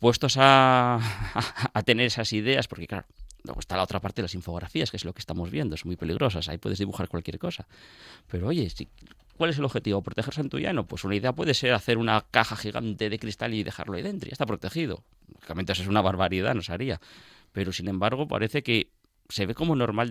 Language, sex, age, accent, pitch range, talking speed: Spanish, male, 30-49, Spanish, 90-125 Hz, 235 wpm